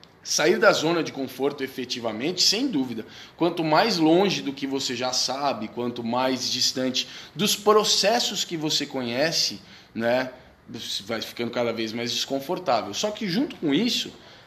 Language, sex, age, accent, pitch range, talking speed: Portuguese, male, 20-39, Brazilian, 150-215 Hz, 150 wpm